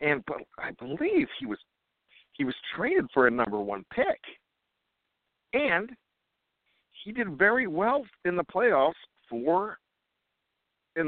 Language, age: English, 50-69